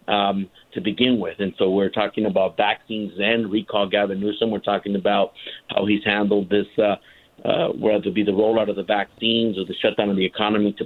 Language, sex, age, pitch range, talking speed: English, male, 50-69, 100-110 Hz, 210 wpm